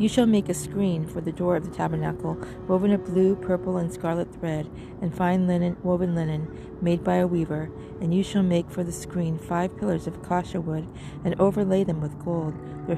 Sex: female